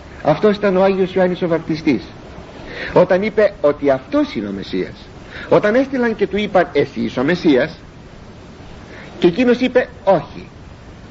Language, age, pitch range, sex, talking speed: Greek, 60-79, 175-250 Hz, male, 145 wpm